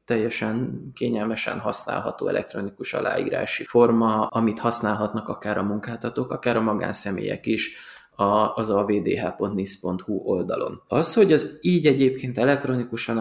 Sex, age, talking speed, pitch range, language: male, 20-39, 110 wpm, 105-130 Hz, Hungarian